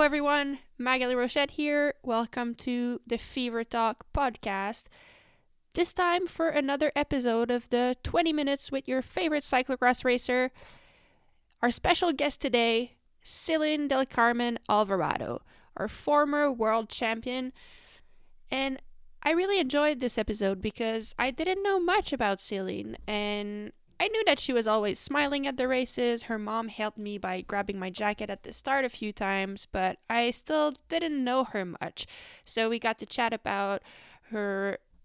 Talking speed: 150 wpm